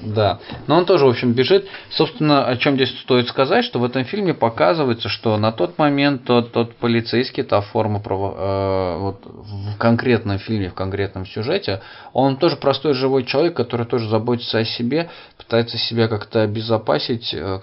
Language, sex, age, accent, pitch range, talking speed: Russian, male, 20-39, native, 95-120 Hz, 165 wpm